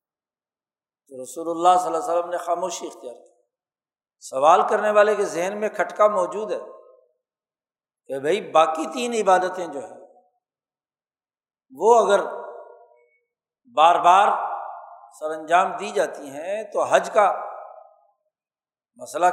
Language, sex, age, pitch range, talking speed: Urdu, male, 60-79, 165-195 Hz, 120 wpm